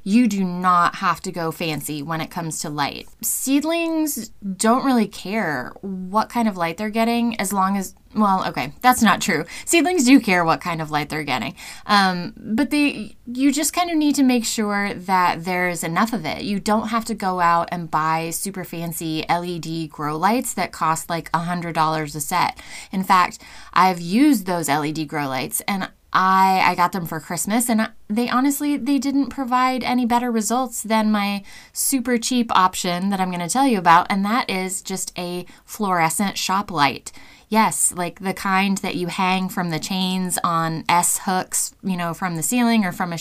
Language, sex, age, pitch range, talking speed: English, female, 20-39, 175-235 Hz, 195 wpm